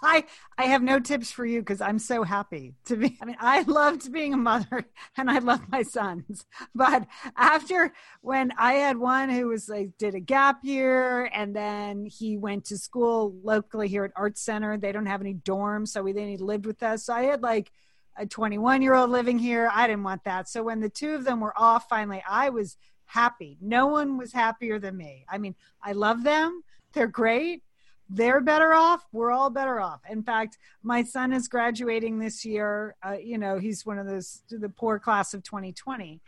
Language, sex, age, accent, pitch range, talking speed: English, female, 40-59, American, 210-265 Hz, 210 wpm